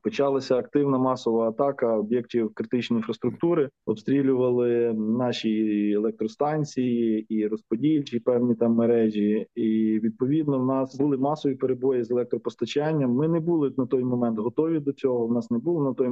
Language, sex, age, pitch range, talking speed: Ukrainian, male, 20-39, 120-140 Hz, 145 wpm